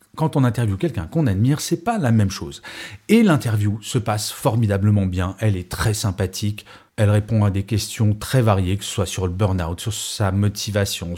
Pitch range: 105-135 Hz